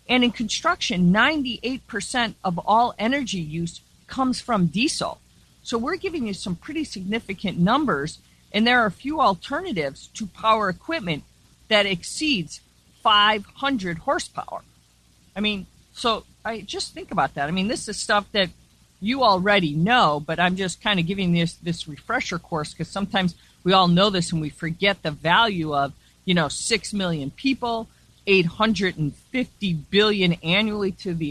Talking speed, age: 155 wpm, 40-59